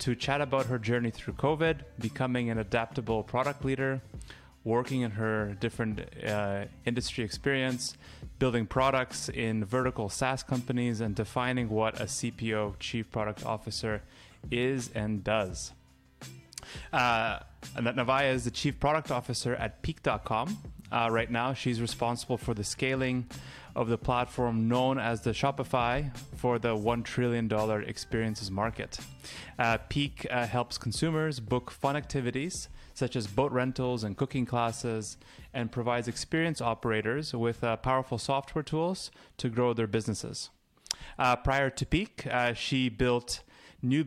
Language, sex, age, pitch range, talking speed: English, male, 20-39, 110-130 Hz, 140 wpm